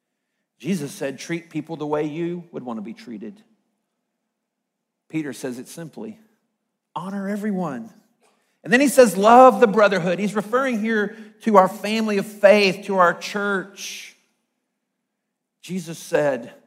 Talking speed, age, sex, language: 135 wpm, 50-69, male, English